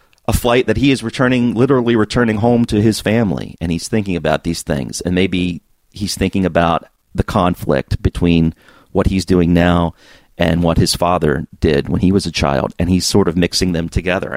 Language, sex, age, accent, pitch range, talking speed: English, male, 40-59, American, 85-110 Hz, 195 wpm